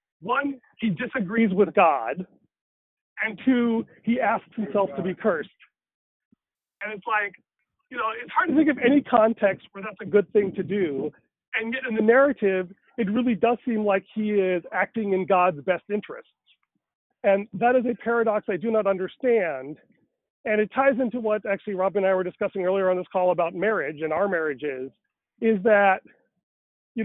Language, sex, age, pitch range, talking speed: English, male, 40-59, 185-230 Hz, 180 wpm